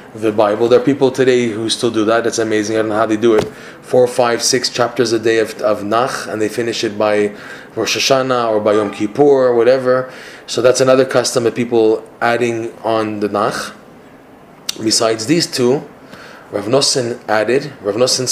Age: 20-39